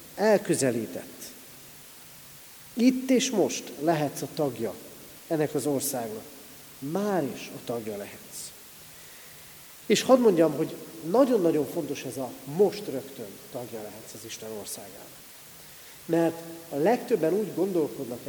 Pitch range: 130-170 Hz